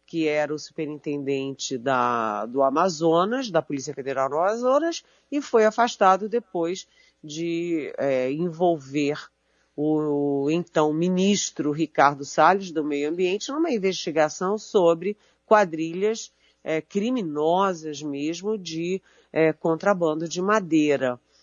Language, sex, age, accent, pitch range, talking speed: Portuguese, female, 40-59, Brazilian, 145-195 Hz, 100 wpm